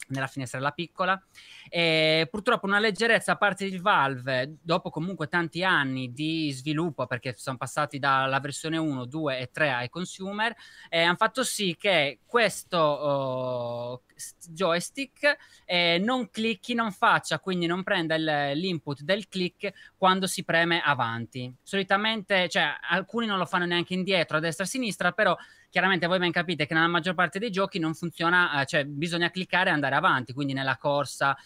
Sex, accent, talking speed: male, native, 165 wpm